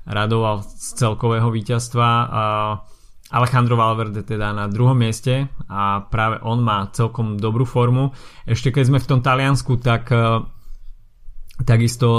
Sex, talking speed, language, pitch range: male, 125 wpm, Slovak, 105-120 Hz